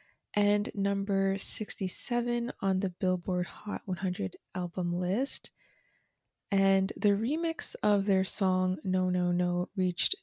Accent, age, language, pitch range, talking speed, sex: American, 20-39, English, 180-215 Hz, 115 wpm, female